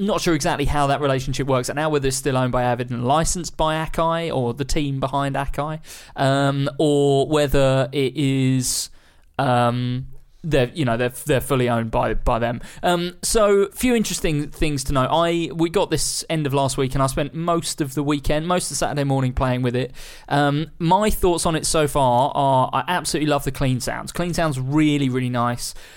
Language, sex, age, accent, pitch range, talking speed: English, male, 20-39, British, 130-155 Hz, 205 wpm